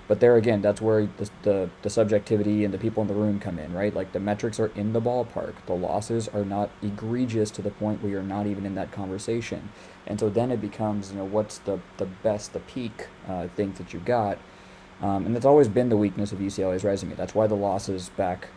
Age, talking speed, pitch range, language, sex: 20-39, 235 wpm, 95-110 Hz, English, male